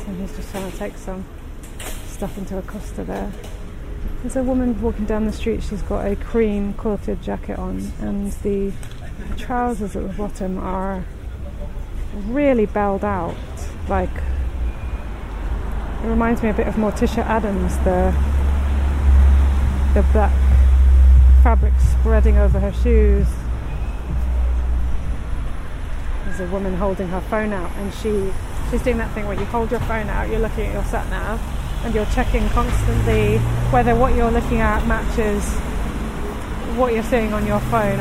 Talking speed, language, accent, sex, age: 145 wpm, English, British, female, 30-49